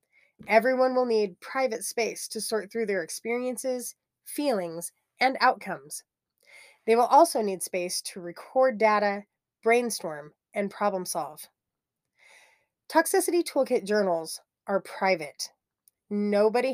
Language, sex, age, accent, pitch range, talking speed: English, female, 30-49, American, 195-240 Hz, 110 wpm